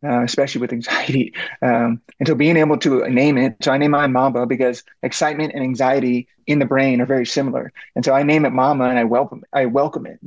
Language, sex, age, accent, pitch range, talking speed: English, male, 30-49, American, 125-145 Hz, 235 wpm